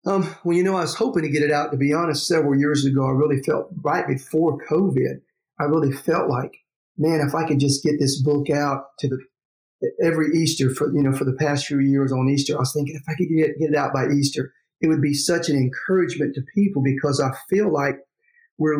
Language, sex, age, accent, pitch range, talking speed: English, male, 40-59, American, 140-160 Hz, 235 wpm